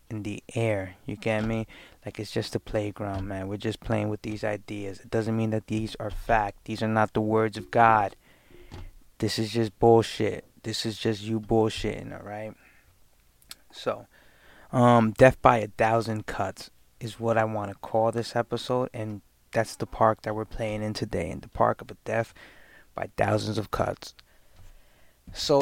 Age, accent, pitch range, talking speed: 20-39, American, 105-115 Hz, 180 wpm